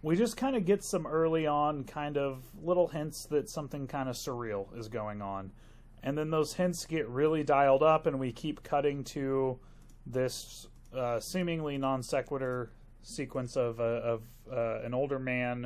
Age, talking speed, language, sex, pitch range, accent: 30-49, 175 wpm, English, male, 120-150 Hz, American